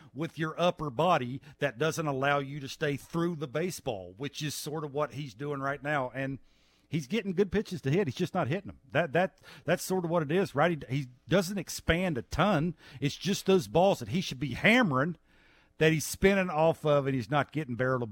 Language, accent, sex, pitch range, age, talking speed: English, American, male, 135-170 Hz, 50-69, 230 wpm